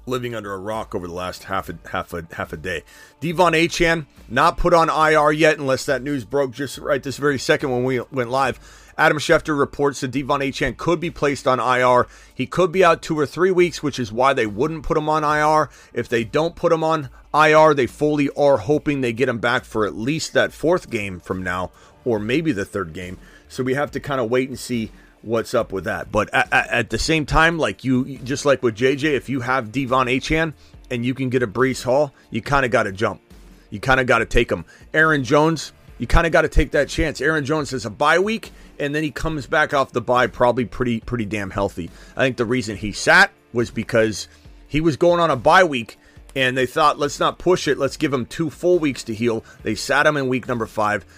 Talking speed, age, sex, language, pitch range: 245 wpm, 30-49, male, English, 120-150 Hz